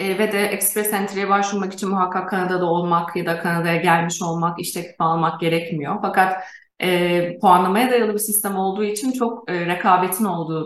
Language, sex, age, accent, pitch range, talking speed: Turkish, female, 30-49, native, 175-215 Hz, 170 wpm